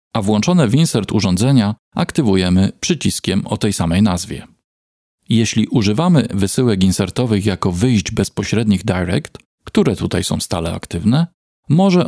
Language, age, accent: Polish, 40-59, native